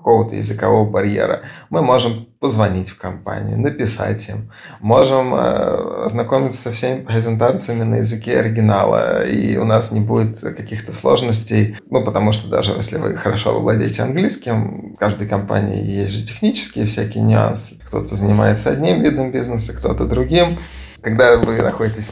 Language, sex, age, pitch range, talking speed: Russian, male, 20-39, 105-120 Hz, 140 wpm